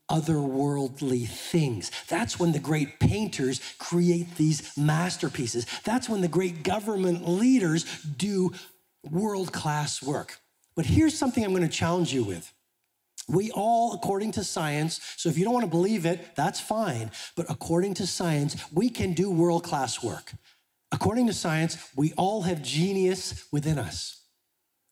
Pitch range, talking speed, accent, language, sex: 125-180 Hz, 145 wpm, American, English, male